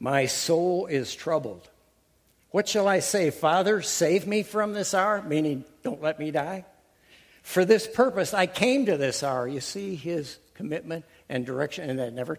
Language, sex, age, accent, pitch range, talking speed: English, male, 60-79, American, 130-165 Hz, 175 wpm